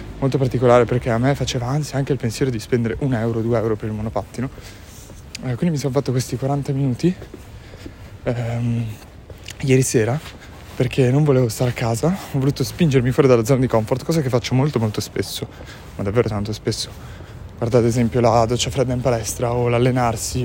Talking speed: 190 wpm